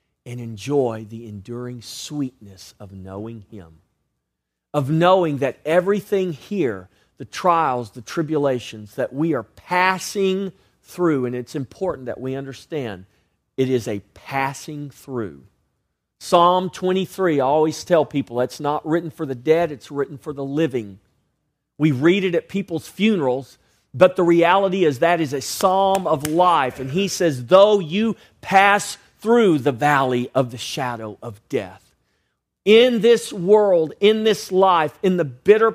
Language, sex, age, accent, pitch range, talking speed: English, male, 40-59, American, 135-195 Hz, 150 wpm